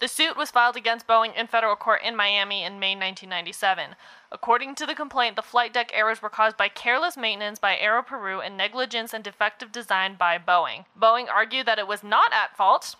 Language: English